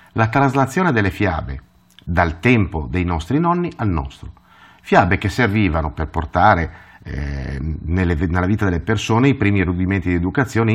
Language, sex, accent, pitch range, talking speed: Italian, male, native, 80-110 Hz, 145 wpm